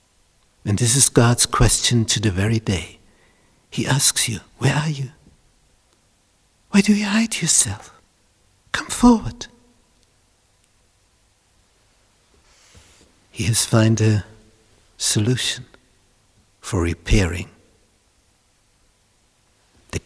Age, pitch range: 60-79, 95-130 Hz